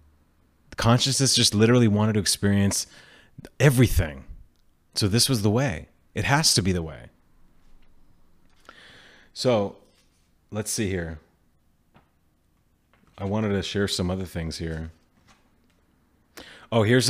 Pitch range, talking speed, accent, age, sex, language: 85-115 Hz, 110 wpm, American, 30-49, male, English